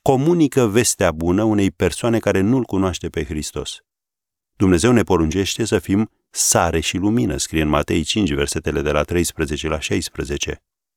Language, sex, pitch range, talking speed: Romanian, male, 80-105 Hz, 155 wpm